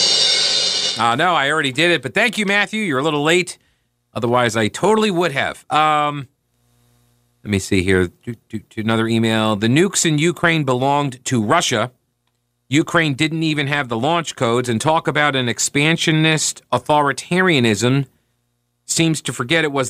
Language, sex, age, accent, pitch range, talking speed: English, male, 40-59, American, 120-155 Hz, 155 wpm